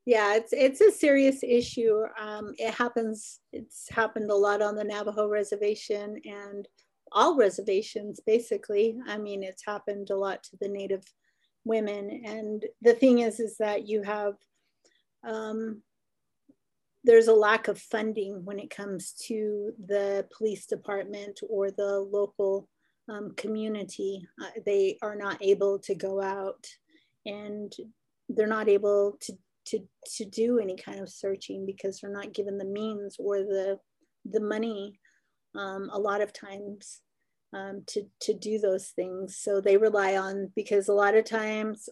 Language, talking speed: English, 155 wpm